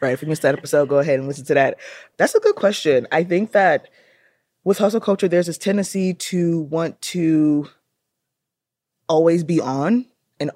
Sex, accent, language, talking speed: female, American, English, 180 wpm